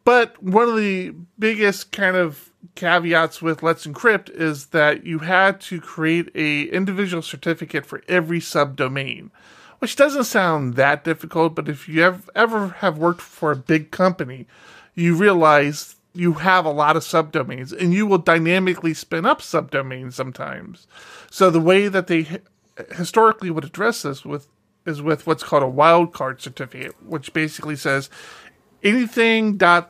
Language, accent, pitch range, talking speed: English, American, 150-180 Hz, 155 wpm